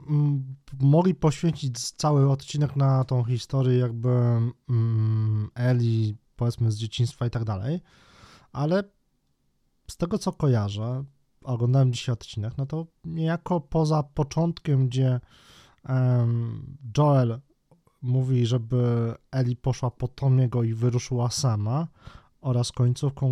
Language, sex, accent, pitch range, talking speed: Polish, male, native, 125-145 Hz, 105 wpm